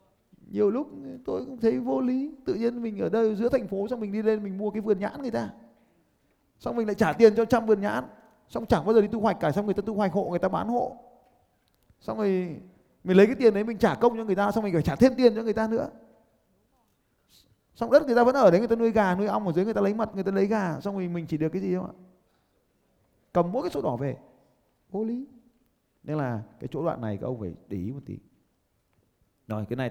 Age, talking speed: 20-39, 265 wpm